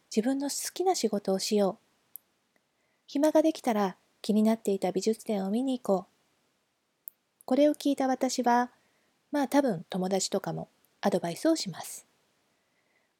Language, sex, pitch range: Japanese, female, 195-255 Hz